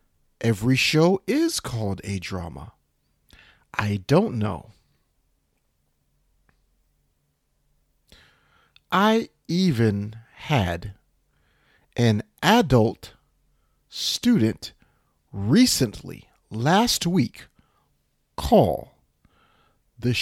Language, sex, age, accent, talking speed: English, male, 40-59, American, 60 wpm